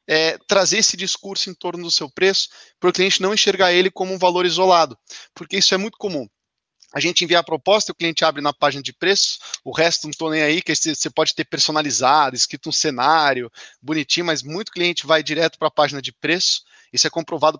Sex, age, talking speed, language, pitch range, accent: male, 20-39, 215 wpm, Portuguese, 150-195 Hz, Brazilian